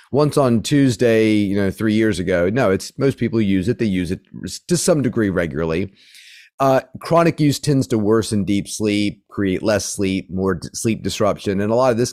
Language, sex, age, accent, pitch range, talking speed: English, male, 40-59, American, 100-135 Hz, 205 wpm